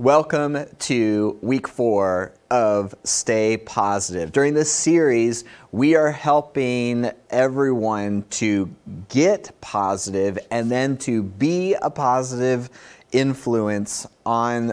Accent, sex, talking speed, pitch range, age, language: American, male, 100 wpm, 105-135 Hz, 30-49, English